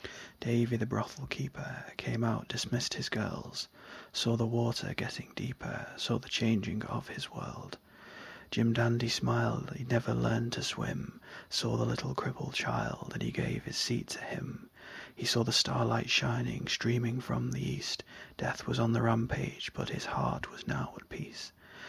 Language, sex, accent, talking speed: English, male, British, 165 wpm